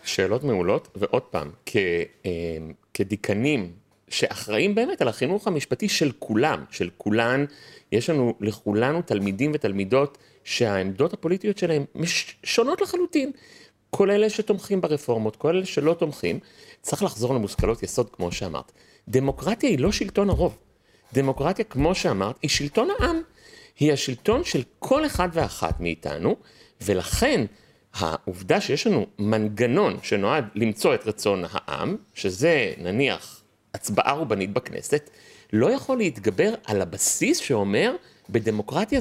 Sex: male